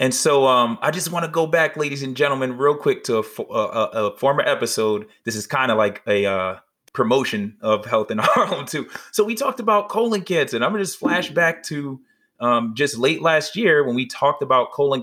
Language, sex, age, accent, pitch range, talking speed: English, male, 20-39, American, 120-160 Hz, 230 wpm